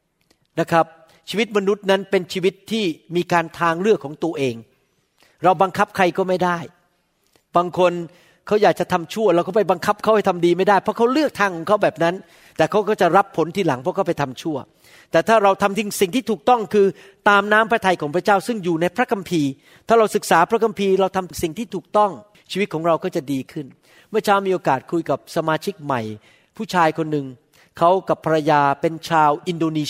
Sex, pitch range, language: male, 160-200 Hz, Thai